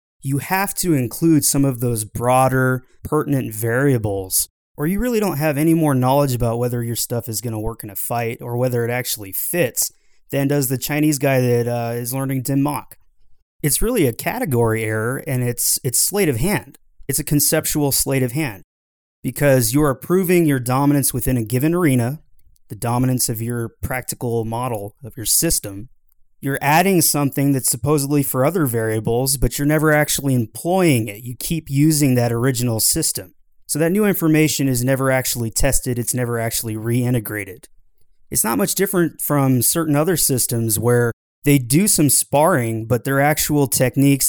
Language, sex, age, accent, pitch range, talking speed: English, male, 20-39, American, 115-145 Hz, 175 wpm